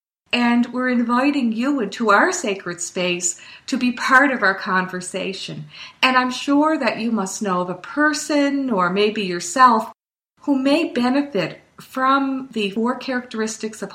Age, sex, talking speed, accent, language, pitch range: 50-69, female, 150 wpm, American, English, 190-255 Hz